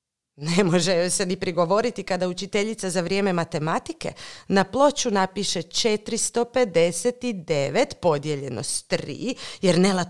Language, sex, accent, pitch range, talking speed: Croatian, female, native, 170-270 Hz, 120 wpm